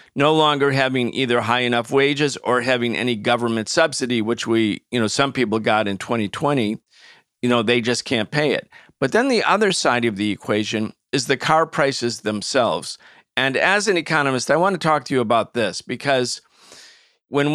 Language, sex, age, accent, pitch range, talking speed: English, male, 50-69, American, 110-130 Hz, 190 wpm